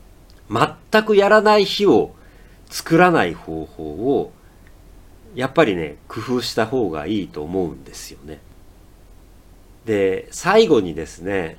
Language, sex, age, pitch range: Japanese, male, 40-59, 85-115 Hz